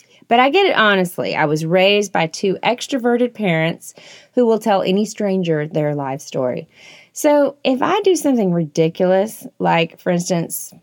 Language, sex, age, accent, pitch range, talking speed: English, female, 30-49, American, 165-220 Hz, 160 wpm